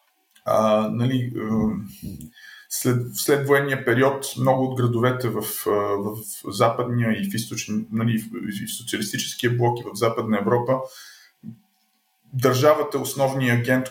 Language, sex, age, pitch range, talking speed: Bulgarian, male, 20-39, 110-130 Hz, 120 wpm